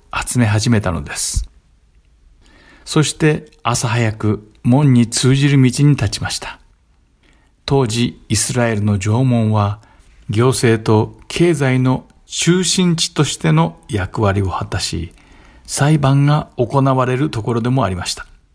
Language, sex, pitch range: Japanese, male, 105-135 Hz